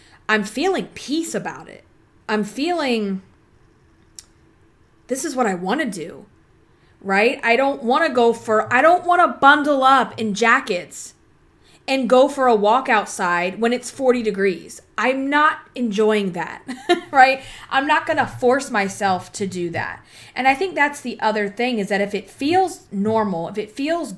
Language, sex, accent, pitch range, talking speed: English, female, American, 190-250 Hz, 160 wpm